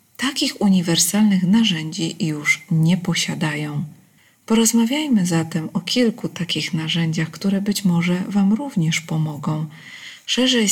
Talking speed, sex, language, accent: 105 wpm, female, Polish, native